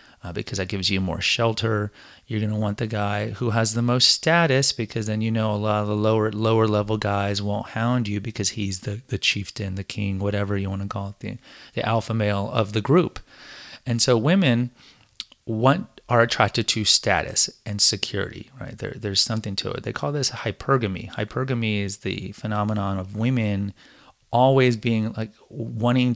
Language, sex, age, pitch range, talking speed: English, male, 30-49, 100-120 Hz, 185 wpm